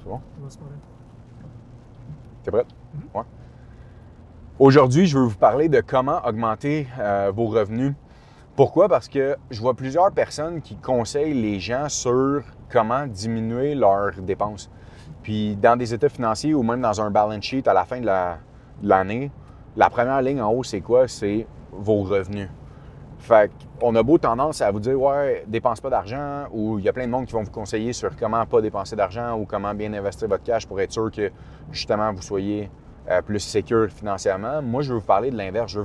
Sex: male